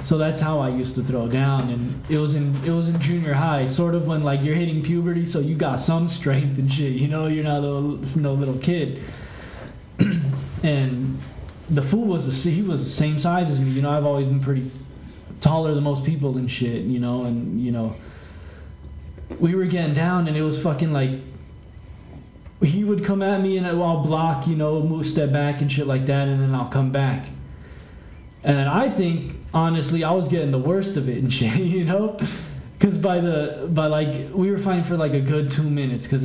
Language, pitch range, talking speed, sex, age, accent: English, 130-165 Hz, 220 wpm, male, 20-39, American